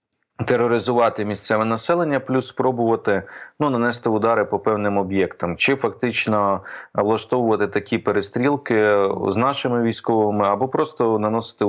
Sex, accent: male, native